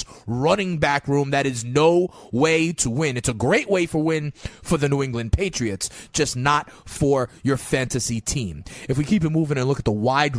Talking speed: 210 wpm